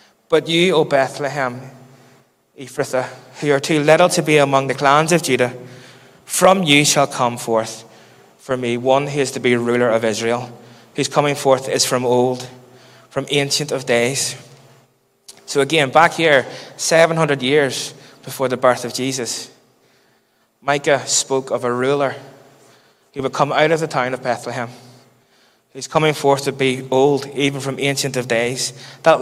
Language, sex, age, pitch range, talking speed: English, male, 20-39, 125-145 Hz, 160 wpm